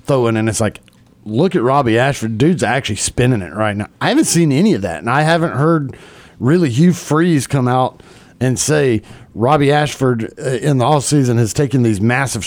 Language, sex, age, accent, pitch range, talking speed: English, male, 40-59, American, 115-145 Hz, 190 wpm